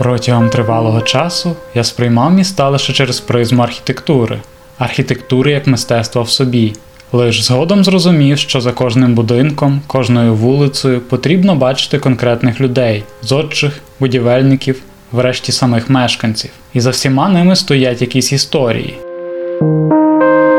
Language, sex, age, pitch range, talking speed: Ukrainian, male, 10-29, 120-145 Hz, 115 wpm